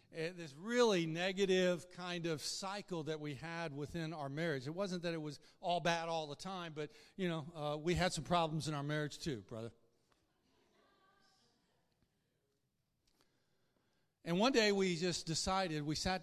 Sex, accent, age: male, American, 50-69